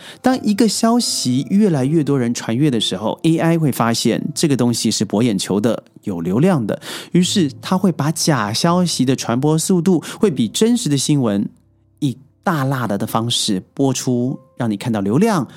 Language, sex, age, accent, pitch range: Chinese, male, 30-49, native, 115-165 Hz